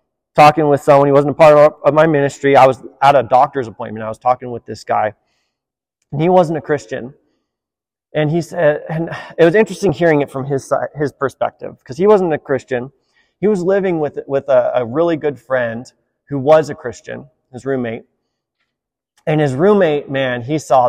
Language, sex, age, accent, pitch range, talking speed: English, male, 30-49, American, 135-210 Hz, 200 wpm